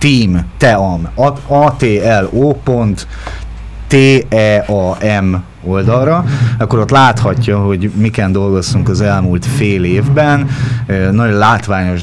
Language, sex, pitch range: Hungarian, male, 90-115 Hz